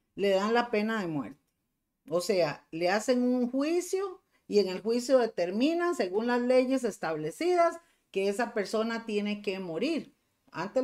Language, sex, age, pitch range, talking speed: Spanish, female, 40-59, 195-275 Hz, 155 wpm